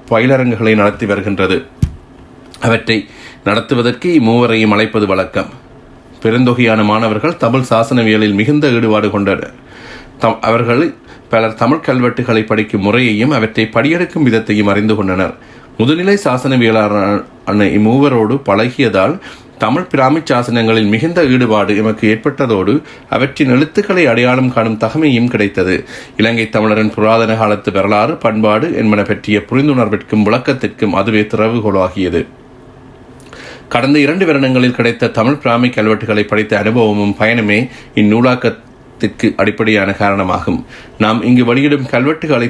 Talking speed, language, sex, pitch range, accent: 100 wpm, Tamil, male, 105-125 Hz, native